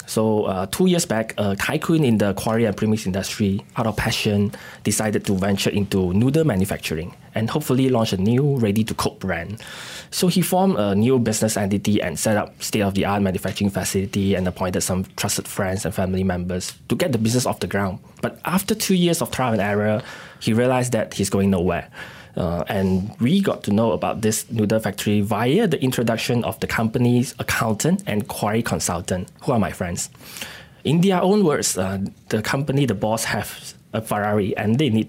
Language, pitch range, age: English, 100-125 Hz, 20-39